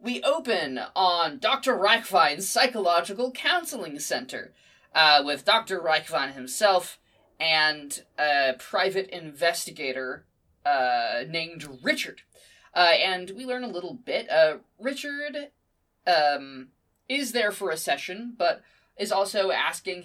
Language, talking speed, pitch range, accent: English, 115 wpm, 155-215 Hz, American